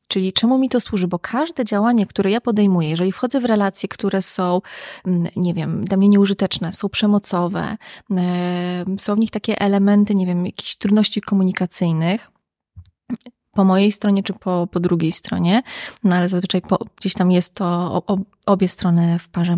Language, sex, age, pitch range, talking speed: Polish, female, 30-49, 180-215 Hz, 160 wpm